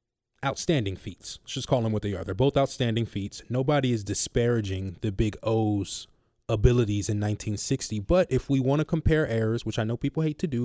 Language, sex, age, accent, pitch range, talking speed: English, male, 20-39, American, 105-135 Hz, 205 wpm